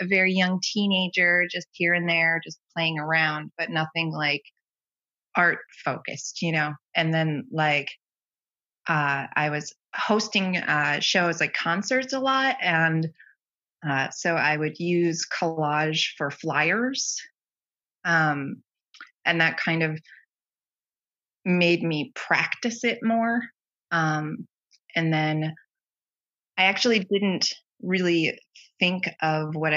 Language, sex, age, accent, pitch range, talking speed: English, female, 20-39, American, 150-180 Hz, 120 wpm